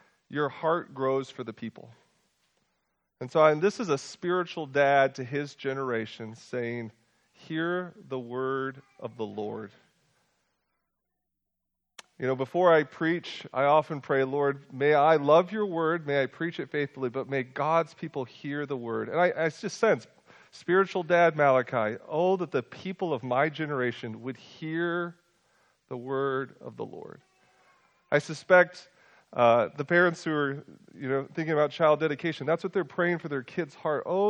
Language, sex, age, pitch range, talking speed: English, male, 40-59, 135-175 Hz, 165 wpm